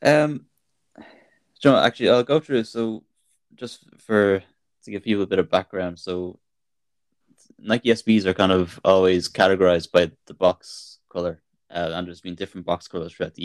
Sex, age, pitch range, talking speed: male, 10-29, 90-100 Hz, 160 wpm